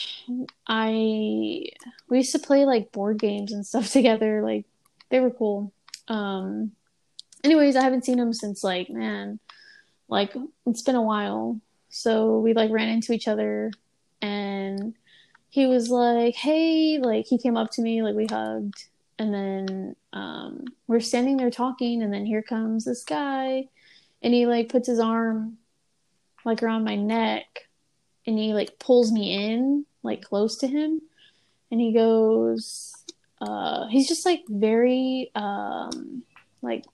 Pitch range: 205-255 Hz